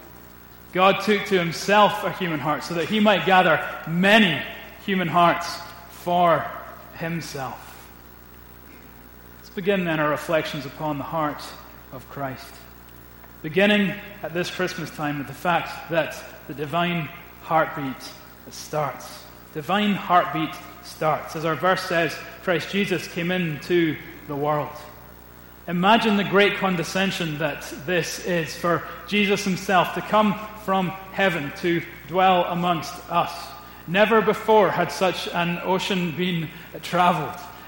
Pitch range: 155-190 Hz